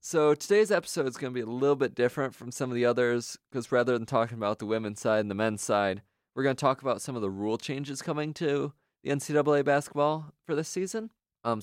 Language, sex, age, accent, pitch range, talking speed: English, male, 20-39, American, 100-130 Hz, 245 wpm